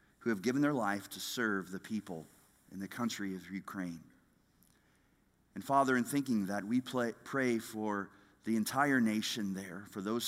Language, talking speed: English, 165 wpm